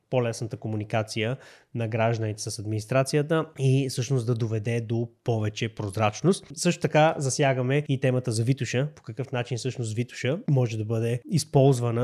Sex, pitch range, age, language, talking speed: male, 115-140 Hz, 20-39, Bulgarian, 145 wpm